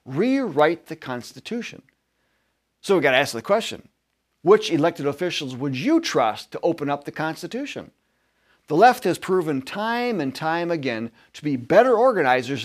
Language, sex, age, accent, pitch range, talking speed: English, male, 40-59, American, 125-175 Hz, 155 wpm